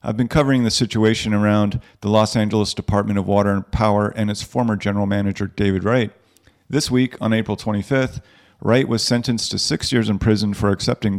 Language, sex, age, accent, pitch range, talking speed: English, male, 50-69, American, 100-120 Hz, 195 wpm